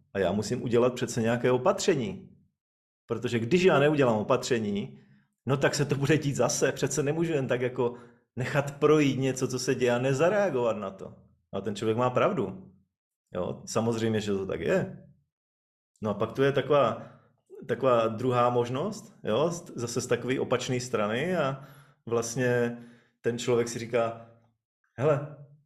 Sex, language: male, Czech